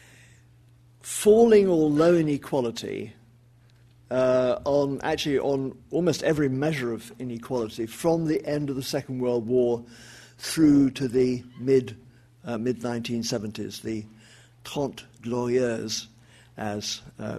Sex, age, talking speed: male, 50-69, 110 wpm